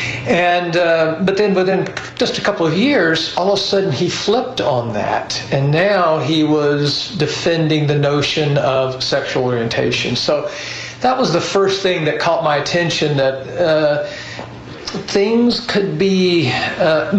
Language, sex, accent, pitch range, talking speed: English, male, American, 145-175 Hz, 155 wpm